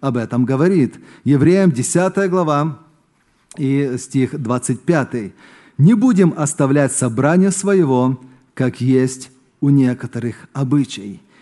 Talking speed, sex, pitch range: 100 wpm, male, 140-205 Hz